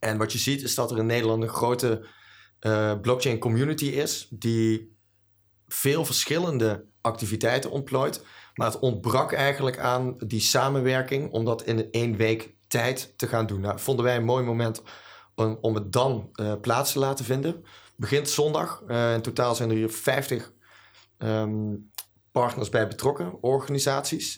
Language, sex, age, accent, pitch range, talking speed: Dutch, male, 30-49, Dutch, 110-125 Hz, 160 wpm